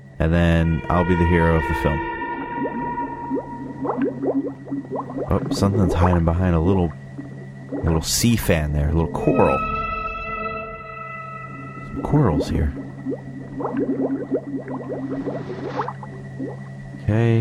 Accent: American